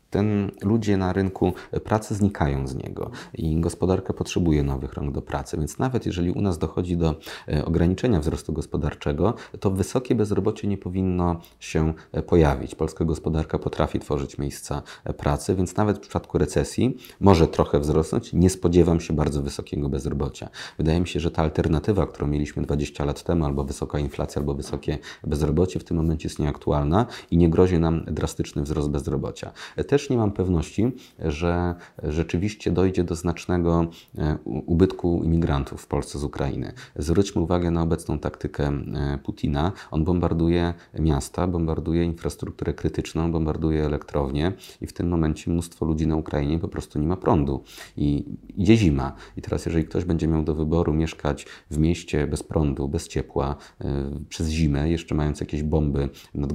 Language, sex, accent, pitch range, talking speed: Polish, male, native, 75-90 Hz, 155 wpm